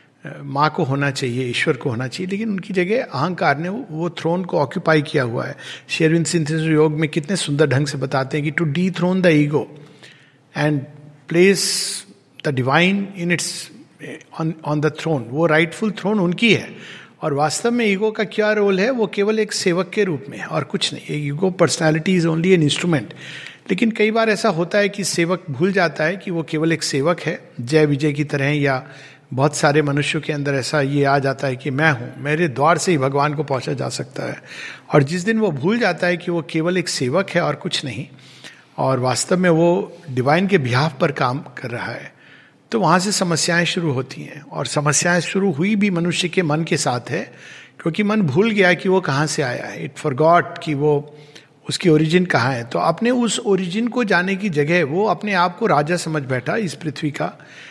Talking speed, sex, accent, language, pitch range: 210 wpm, male, native, Hindi, 150-185 Hz